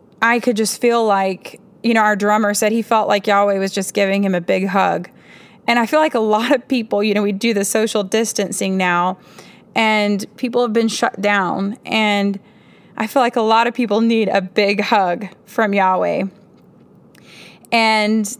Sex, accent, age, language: female, American, 20-39, English